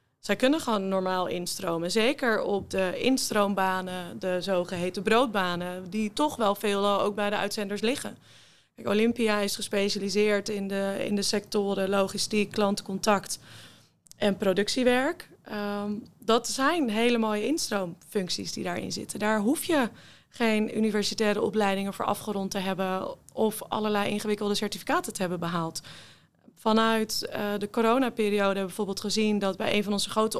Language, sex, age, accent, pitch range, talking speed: Dutch, female, 20-39, Dutch, 195-220 Hz, 140 wpm